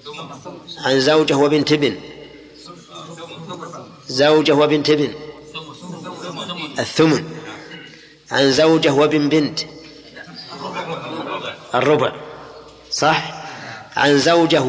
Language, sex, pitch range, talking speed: Arabic, male, 135-155 Hz, 65 wpm